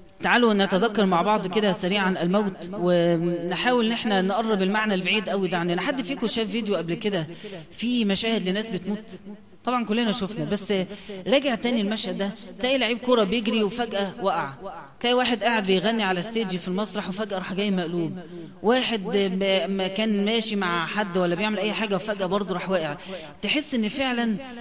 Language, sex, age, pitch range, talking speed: English, female, 30-49, 190-235 Hz, 165 wpm